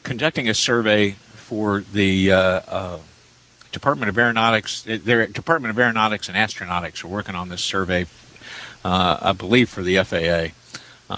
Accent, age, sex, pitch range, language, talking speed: American, 60-79, male, 95-120 Hz, English, 150 wpm